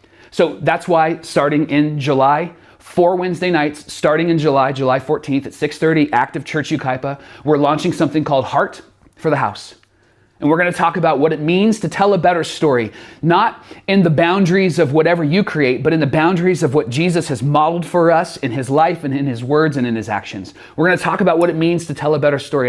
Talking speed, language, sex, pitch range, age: 220 wpm, English, male, 120-165 Hz, 30-49